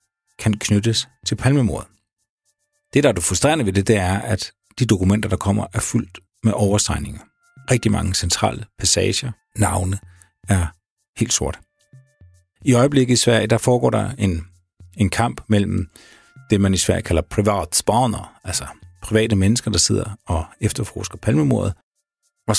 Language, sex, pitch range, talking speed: Danish, male, 95-115 Hz, 150 wpm